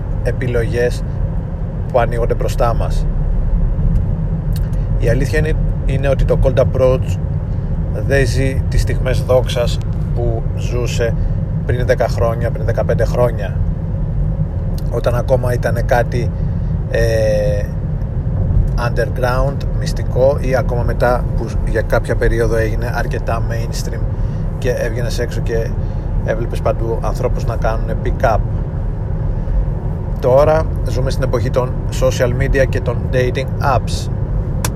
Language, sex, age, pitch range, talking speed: Greek, male, 30-49, 105-125 Hz, 110 wpm